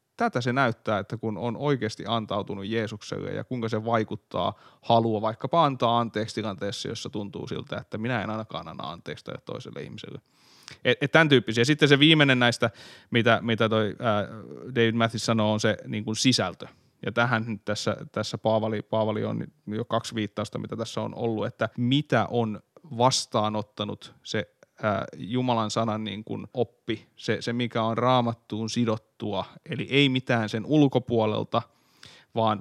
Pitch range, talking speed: 110-125 Hz, 155 wpm